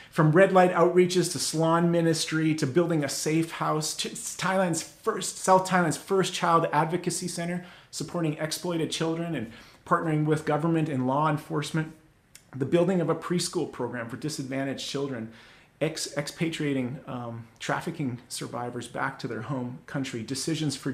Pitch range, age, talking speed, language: 130-155 Hz, 30-49, 150 wpm, English